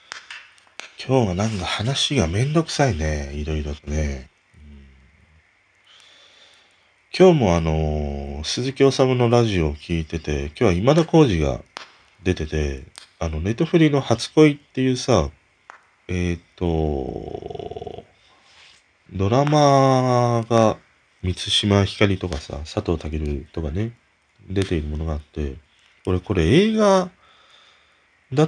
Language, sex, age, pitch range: Japanese, male, 40-59, 80-130 Hz